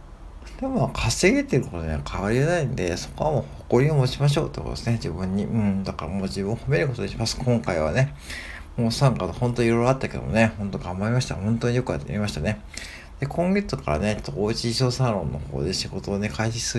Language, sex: Japanese, male